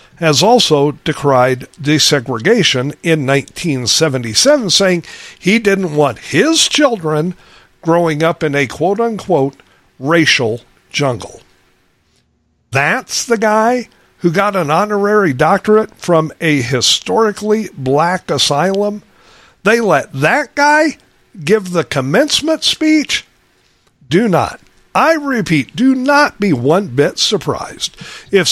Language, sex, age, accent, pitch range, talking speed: English, male, 50-69, American, 145-210 Hz, 110 wpm